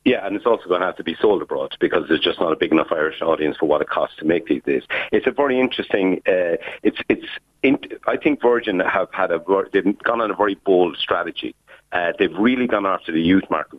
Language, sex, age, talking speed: English, male, 50-69, 250 wpm